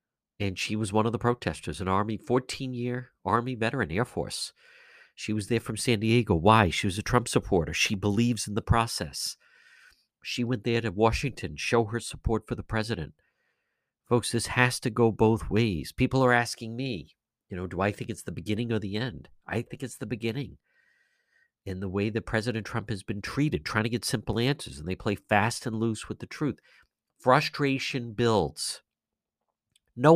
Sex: male